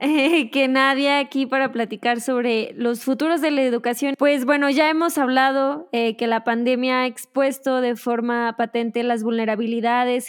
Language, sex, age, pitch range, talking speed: Spanish, female, 20-39, 240-285 Hz, 155 wpm